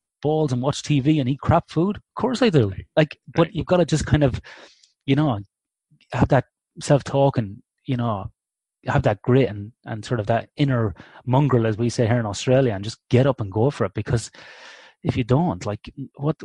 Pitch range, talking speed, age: 105-135 Hz, 210 wpm, 30-49